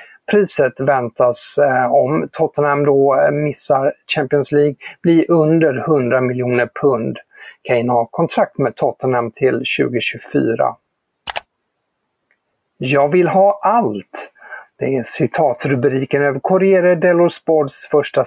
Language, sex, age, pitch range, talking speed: English, male, 50-69, 130-160 Hz, 105 wpm